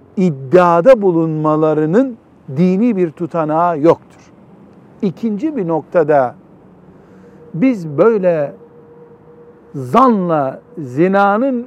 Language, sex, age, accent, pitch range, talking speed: Turkish, male, 60-79, native, 155-205 Hz, 65 wpm